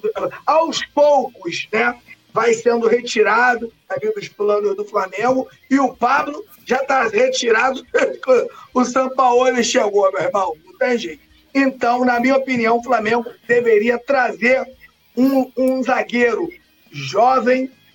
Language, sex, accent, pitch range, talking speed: Portuguese, male, Brazilian, 230-270 Hz, 125 wpm